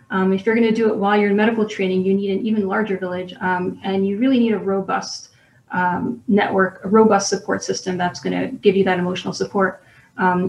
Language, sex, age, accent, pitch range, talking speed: English, female, 30-49, American, 190-225 Hz, 230 wpm